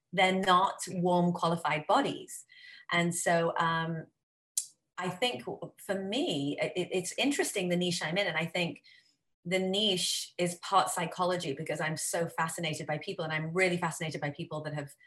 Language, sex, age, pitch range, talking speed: English, female, 30-49, 155-185 Hz, 165 wpm